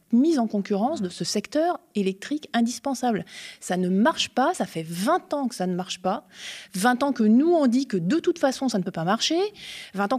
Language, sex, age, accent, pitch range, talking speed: French, female, 20-39, French, 185-240 Hz, 225 wpm